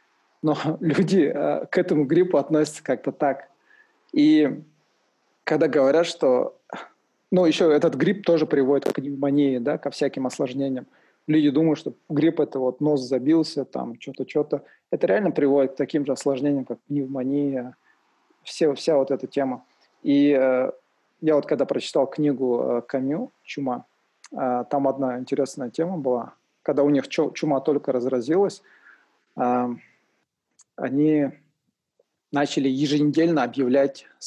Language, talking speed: Russian, 140 wpm